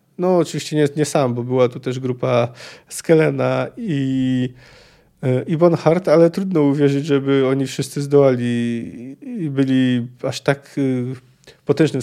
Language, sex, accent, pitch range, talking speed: Polish, male, native, 130-155 Hz, 135 wpm